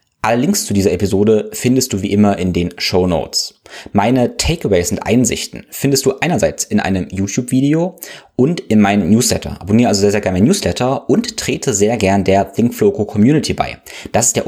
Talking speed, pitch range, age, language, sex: 185 wpm, 95-110 Hz, 20-39, German, male